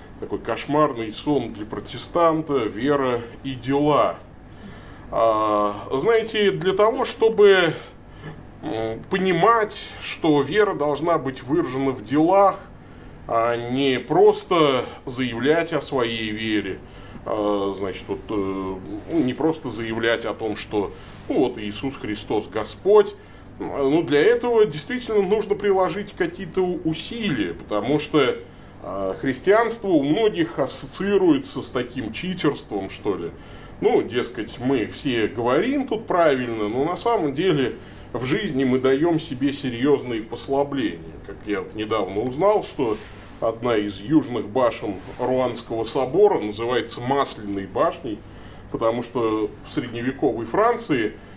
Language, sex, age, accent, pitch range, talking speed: Russian, male, 20-39, native, 110-170 Hz, 115 wpm